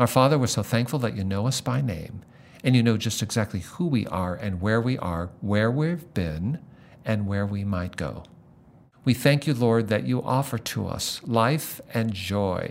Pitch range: 110-140 Hz